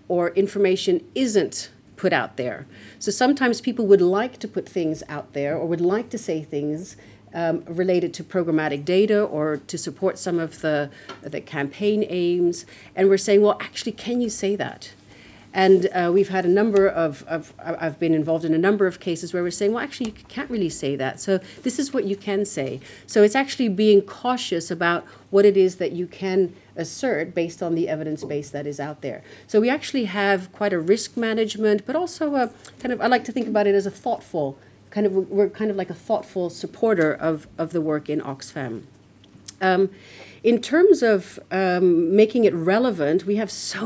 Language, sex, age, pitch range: English, female, 40-59, 165-210 Hz